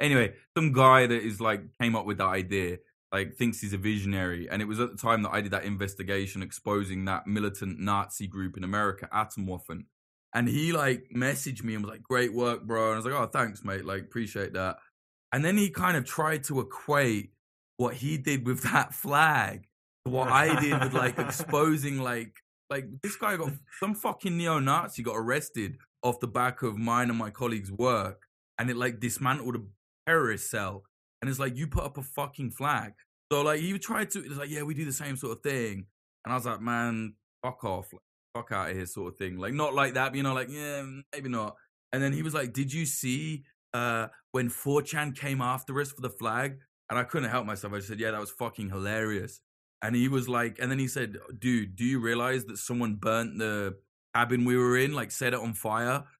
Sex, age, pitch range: male, 20-39, 110-140 Hz